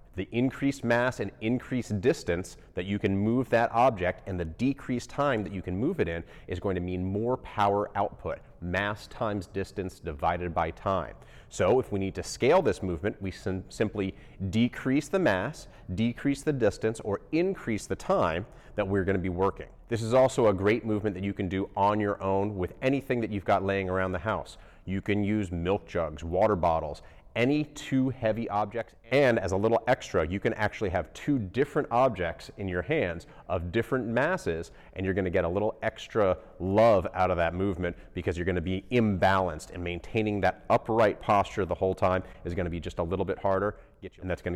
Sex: male